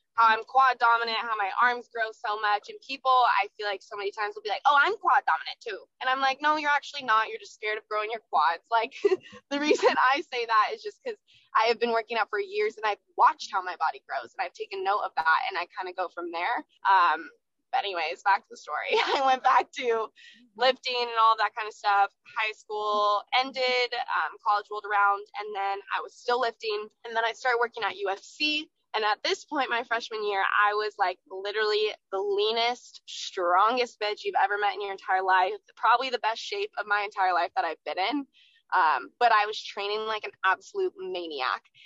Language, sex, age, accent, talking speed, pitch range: English, female, 20-39, American, 225 wpm, 210-270 Hz